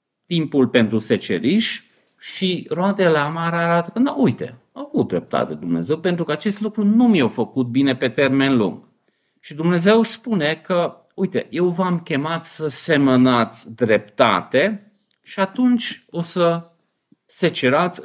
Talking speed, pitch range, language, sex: 135 wpm, 120-175 Hz, Romanian, male